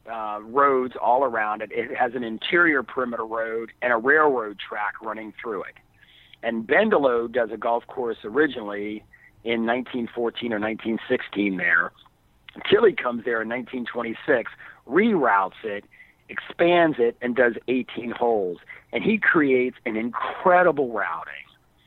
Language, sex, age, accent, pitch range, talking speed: English, male, 50-69, American, 110-130 Hz, 135 wpm